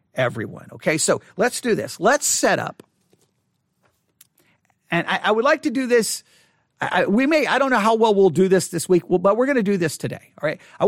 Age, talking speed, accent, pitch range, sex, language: 50-69, 225 wpm, American, 185-255 Hz, male, English